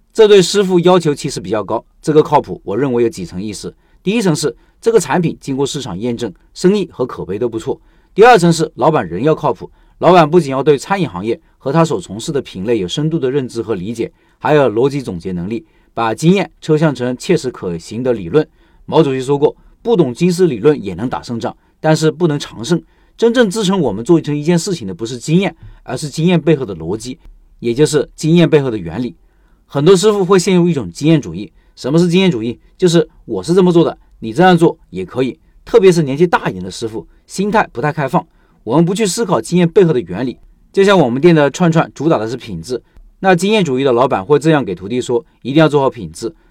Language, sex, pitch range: Chinese, male, 130-180 Hz